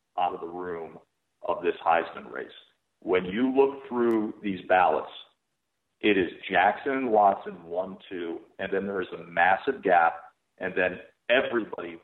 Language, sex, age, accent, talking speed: English, male, 40-59, American, 145 wpm